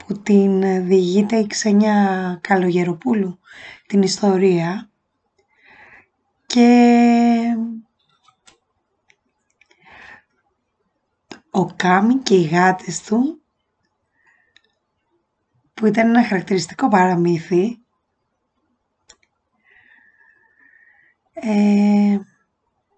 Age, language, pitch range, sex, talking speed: 20-39, Greek, 185-230 Hz, female, 55 wpm